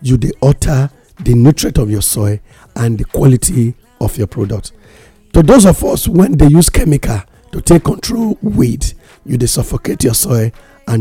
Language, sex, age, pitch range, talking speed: English, male, 50-69, 105-140 Hz, 175 wpm